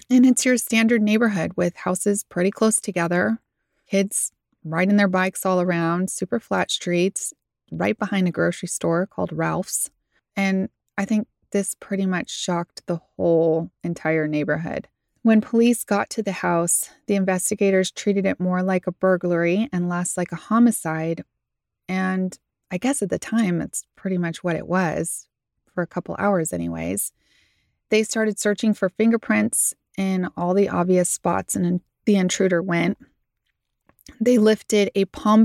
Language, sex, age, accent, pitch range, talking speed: English, female, 20-39, American, 175-210 Hz, 155 wpm